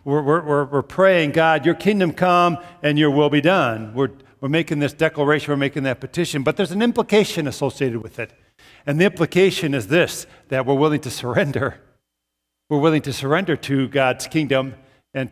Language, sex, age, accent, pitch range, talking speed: English, male, 50-69, American, 145-195 Hz, 185 wpm